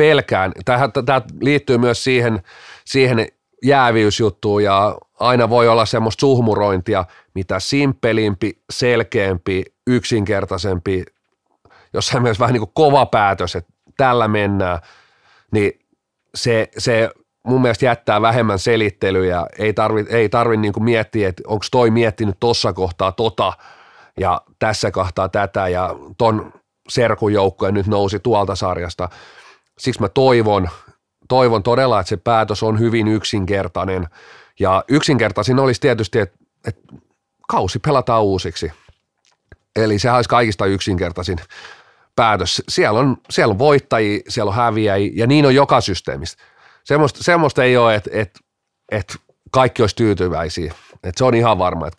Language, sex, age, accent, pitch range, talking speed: Finnish, male, 30-49, native, 95-120 Hz, 130 wpm